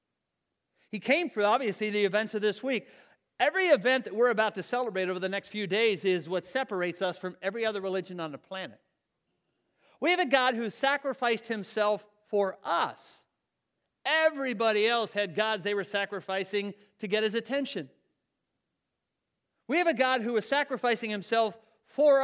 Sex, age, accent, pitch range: male, 40-59, American, 190-245 Hz